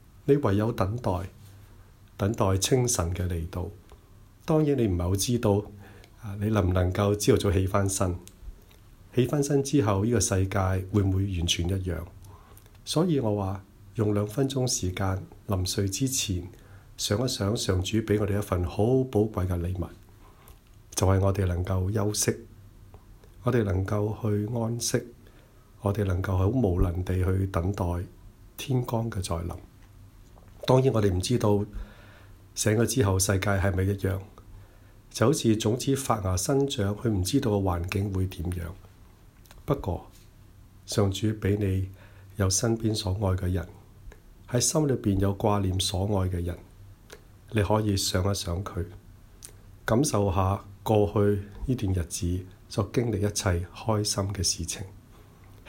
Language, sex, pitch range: Chinese, male, 95-110 Hz